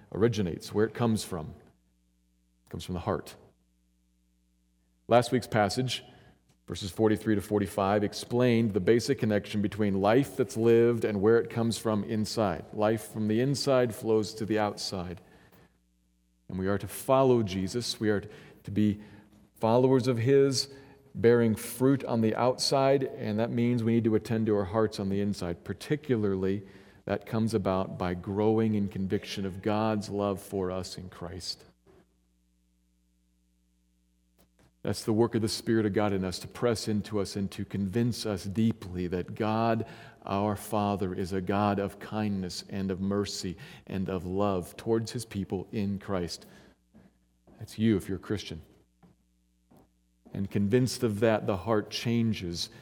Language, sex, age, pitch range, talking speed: English, male, 40-59, 90-115 Hz, 155 wpm